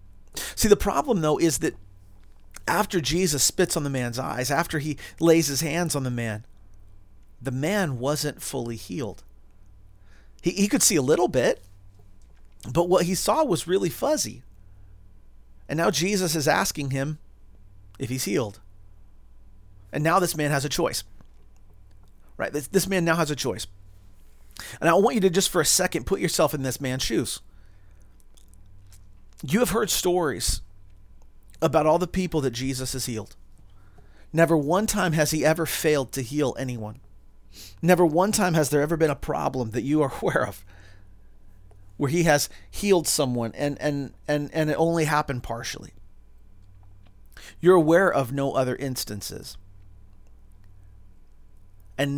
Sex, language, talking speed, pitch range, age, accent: male, English, 155 wpm, 95-160 Hz, 40-59, American